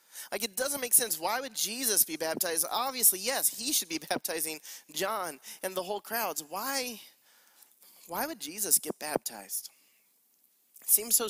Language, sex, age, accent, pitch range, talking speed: English, male, 30-49, American, 185-250 Hz, 160 wpm